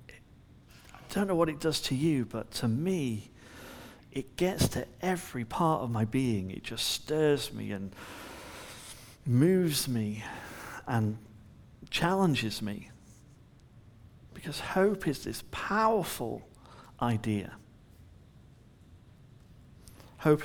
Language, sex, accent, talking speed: English, male, British, 105 wpm